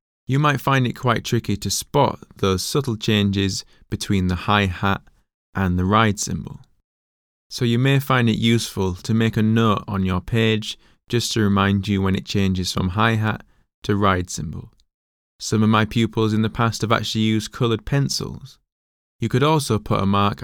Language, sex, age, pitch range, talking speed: English, male, 20-39, 95-120 Hz, 180 wpm